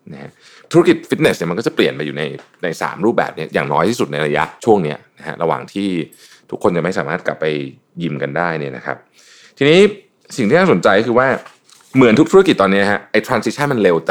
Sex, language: male, Thai